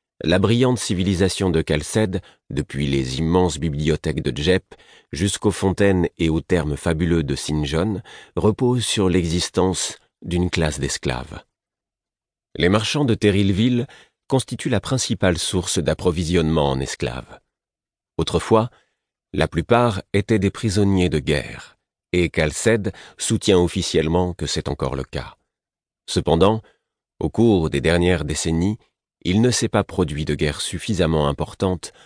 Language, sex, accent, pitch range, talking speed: French, male, French, 75-105 Hz, 125 wpm